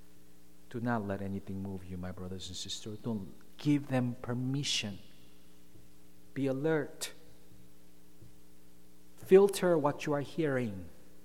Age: 50-69